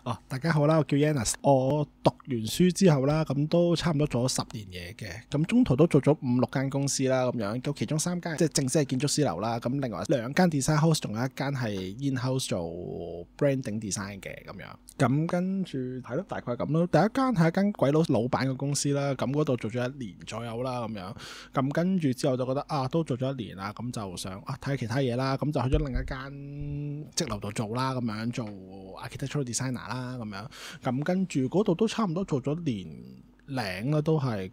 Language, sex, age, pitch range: Chinese, male, 20-39, 115-150 Hz